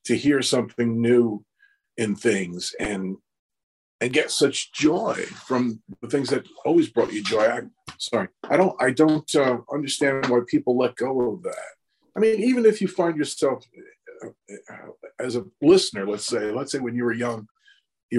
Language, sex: English, male